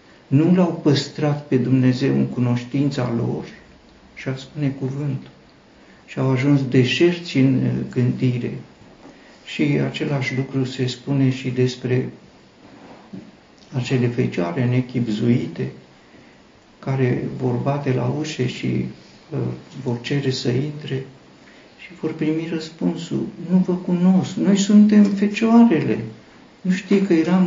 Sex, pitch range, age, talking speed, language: male, 120-155 Hz, 50-69, 110 wpm, Romanian